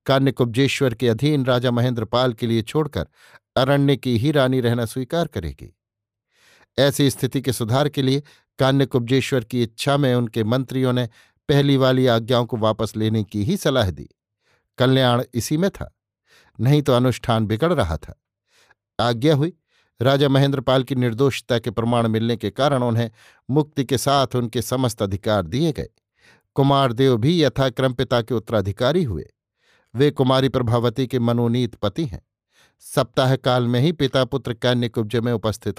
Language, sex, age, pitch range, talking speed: Hindi, male, 50-69, 120-135 Hz, 155 wpm